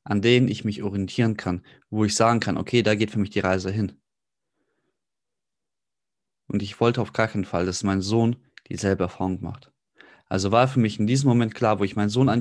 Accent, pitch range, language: German, 100-130 Hz, German